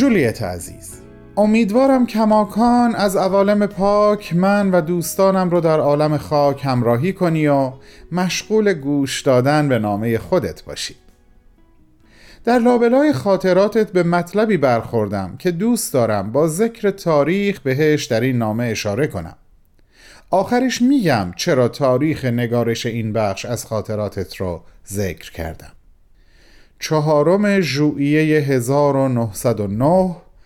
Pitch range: 120-185 Hz